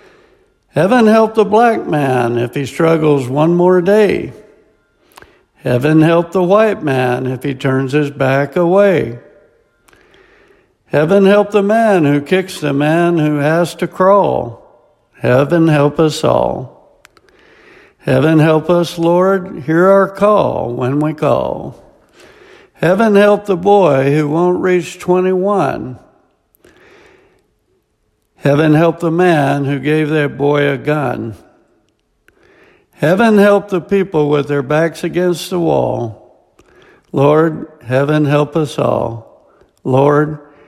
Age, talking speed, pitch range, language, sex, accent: 60-79, 120 wpm, 145-200 Hz, English, male, American